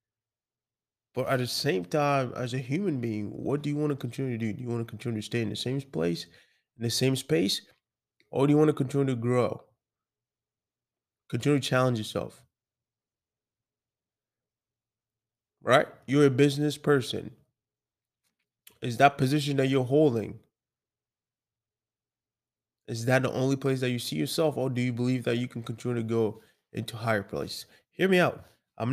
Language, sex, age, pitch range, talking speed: English, male, 20-39, 115-140 Hz, 170 wpm